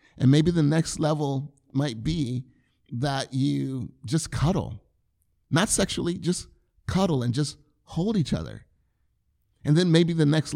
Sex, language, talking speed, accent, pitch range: male, English, 140 wpm, American, 115-150 Hz